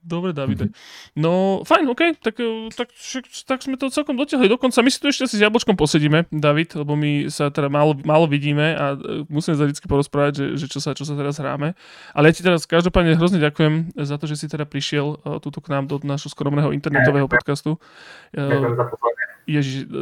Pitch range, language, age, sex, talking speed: 145-165 Hz, Slovak, 20-39, male, 190 wpm